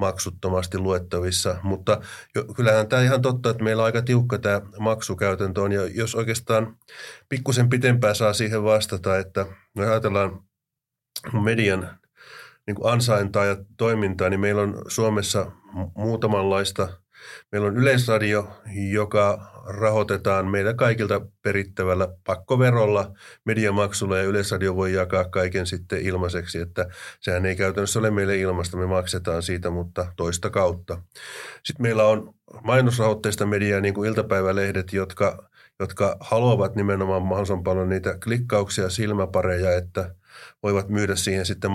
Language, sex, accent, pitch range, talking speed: Finnish, male, native, 95-110 Hz, 125 wpm